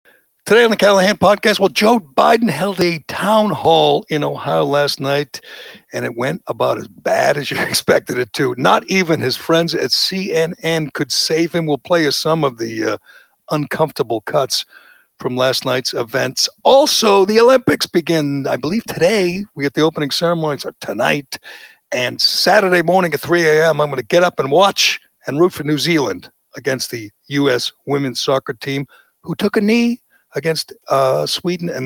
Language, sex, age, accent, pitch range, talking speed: English, male, 60-79, American, 140-190 Hz, 180 wpm